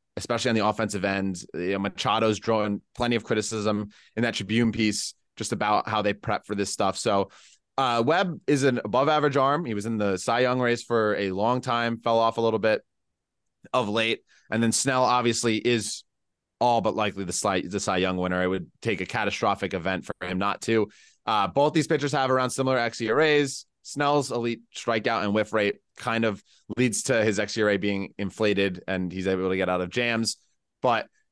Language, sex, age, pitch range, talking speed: English, male, 20-39, 105-130 Hz, 200 wpm